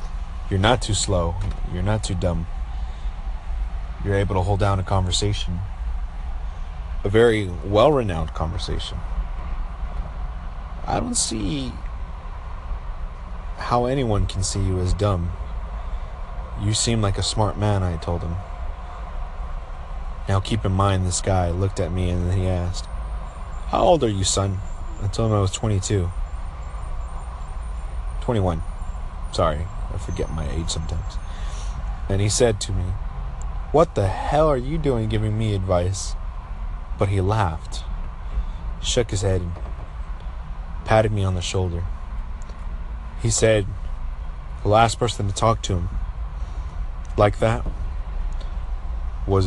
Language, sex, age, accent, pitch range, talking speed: English, male, 30-49, American, 70-95 Hz, 130 wpm